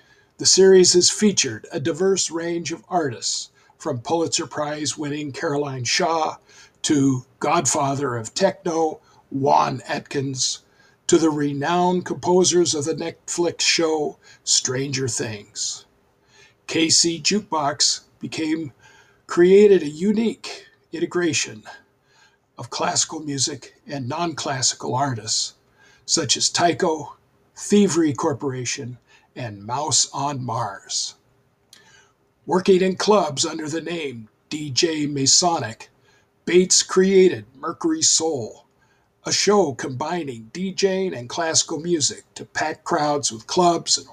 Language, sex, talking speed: English, male, 105 wpm